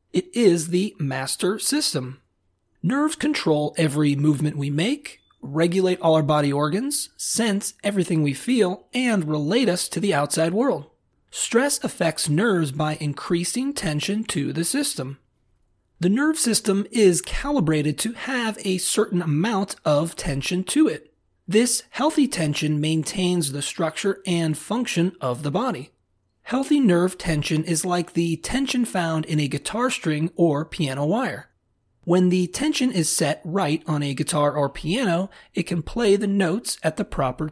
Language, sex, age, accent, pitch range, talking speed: English, male, 30-49, American, 150-215 Hz, 150 wpm